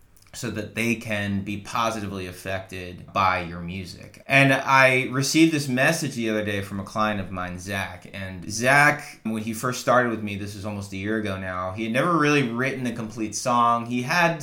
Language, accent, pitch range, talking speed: English, American, 100-120 Hz, 205 wpm